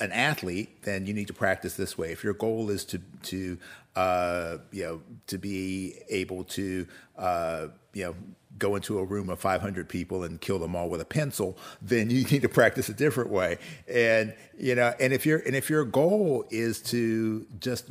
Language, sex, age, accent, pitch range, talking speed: English, male, 50-69, American, 95-120 Hz, 200 wpm